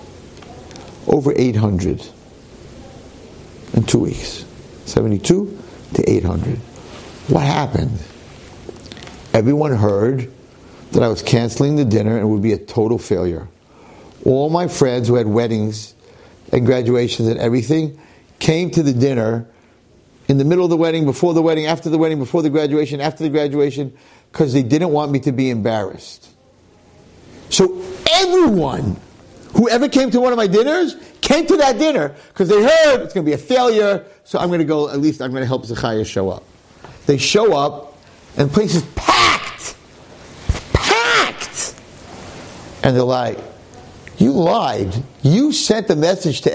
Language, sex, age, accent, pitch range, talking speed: English, male, 50-69, American, 120-195 Hz, 155 wpm